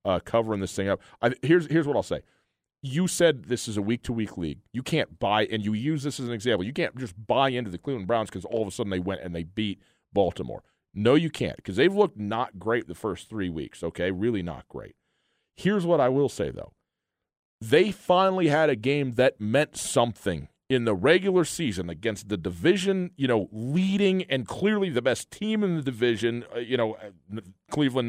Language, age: English, 40-59